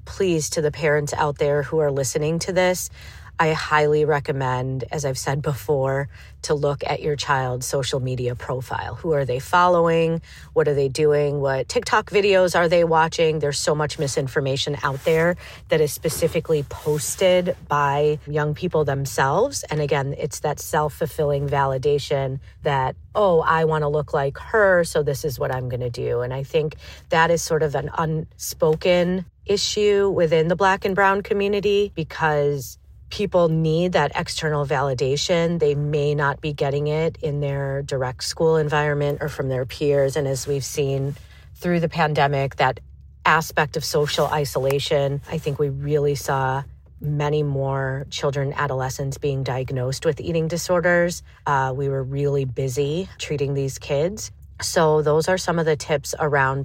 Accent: American